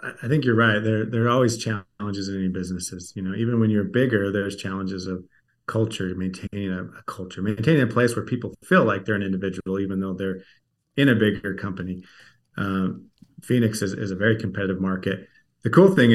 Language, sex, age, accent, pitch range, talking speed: English, male, 30-49, American, 100-120 Hz, 200 wpm